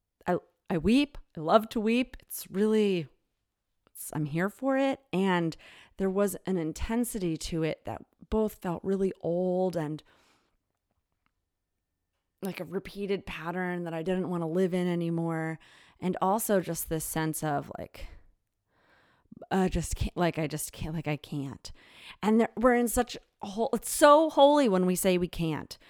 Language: English